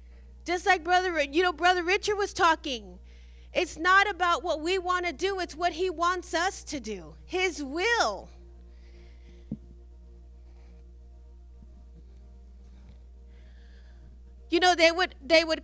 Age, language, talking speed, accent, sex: 30-49, English, 125 wpm, American, female